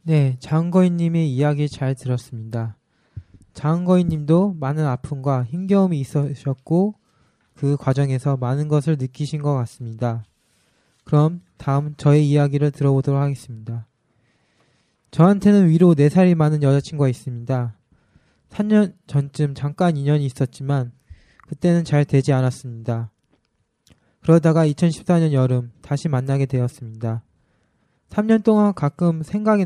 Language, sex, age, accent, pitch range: Korean, male, 20-39, native, 130-170 Hz